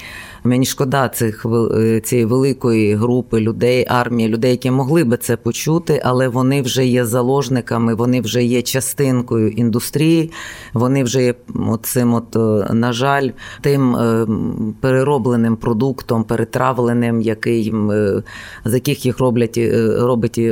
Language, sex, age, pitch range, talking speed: Ukrainian, female, 30-49, 115-130 Hz, 115 wpm